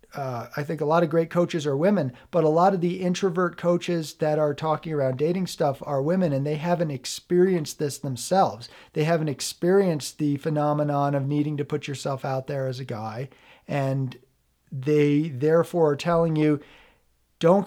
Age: 40-59